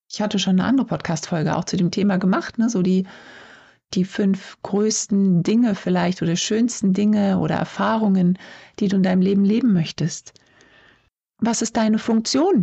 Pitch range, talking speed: 175-225 Hz, 160 wpm